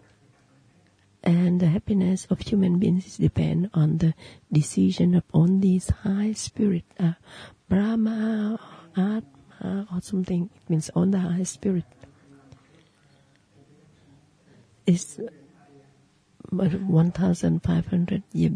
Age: 40-59